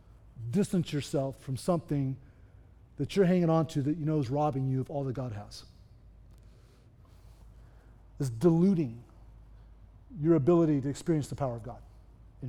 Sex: male